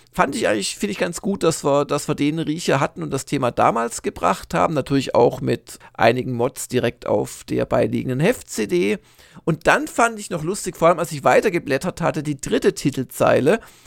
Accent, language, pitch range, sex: German, German, 135-180 Hz, male